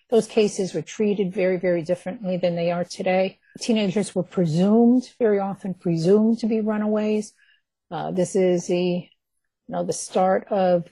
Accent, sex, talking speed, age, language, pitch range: American, female, 160 wpm, 50-69, English, 180-215 Hz